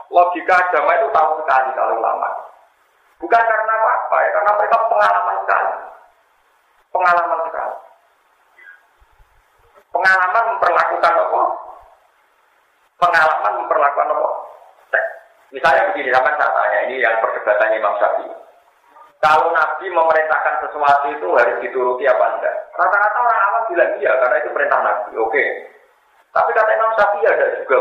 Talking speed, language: 130 wpm, Indonesian